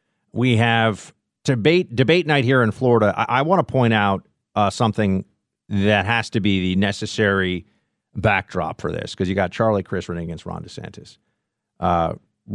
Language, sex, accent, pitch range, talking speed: English, male, American, 95-130 Hz, 165 wpm